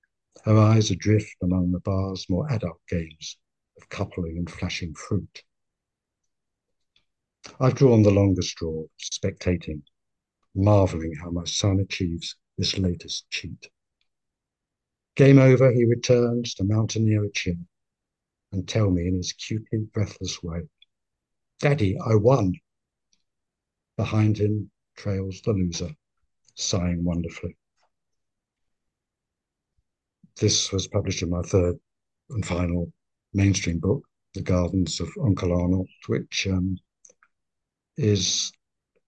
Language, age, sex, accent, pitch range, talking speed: English, 60-79, male, British, 85-105 Hz, 110 wpm